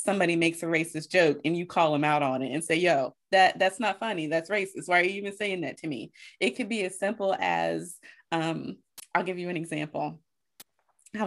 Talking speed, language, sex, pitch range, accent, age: 225 wpm, English, female, 155-190 Hz, American, 30-49